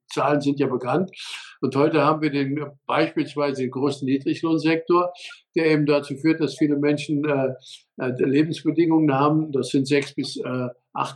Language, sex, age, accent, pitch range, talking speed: German, male, 50-69, German, 140-160 Hz, 150 wpm